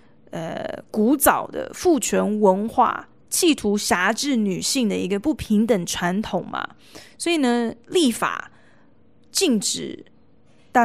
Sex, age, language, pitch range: female, 20-39, Chinese, 200-250 Hz